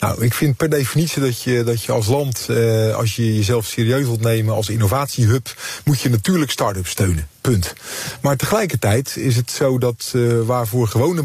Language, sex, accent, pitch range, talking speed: Dutch, male, Dutch, 110-135 Hz, 185 wpm